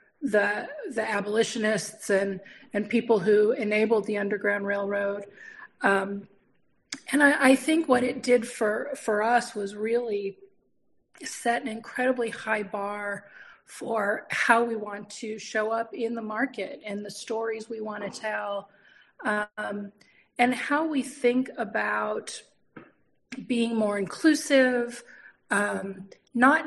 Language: English